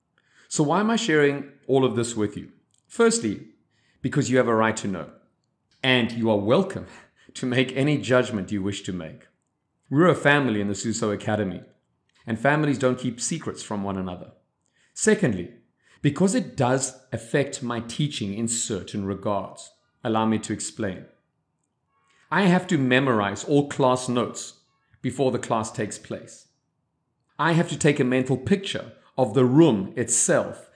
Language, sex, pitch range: Chinese, male, 110-150 Hz